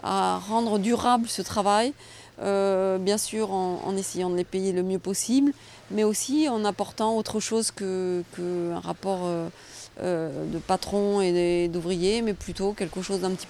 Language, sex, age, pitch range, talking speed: French, female, 30-49, 190-220 Hz, 170 wpm